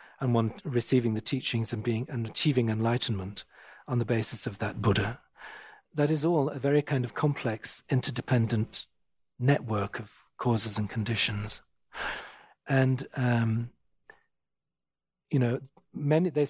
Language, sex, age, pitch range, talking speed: English, male, 40-59, 115-150 Hz, 130 wpm